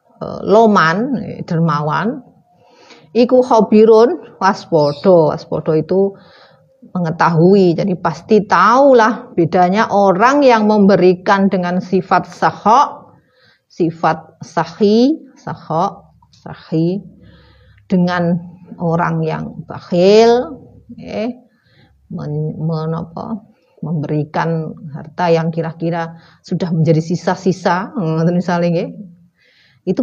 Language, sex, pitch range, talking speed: Indonesian, female, 165-225 Hz, 80 wpm